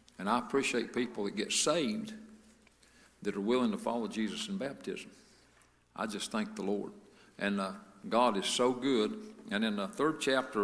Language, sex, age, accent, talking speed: English, male, 60-79, American, 175 wpm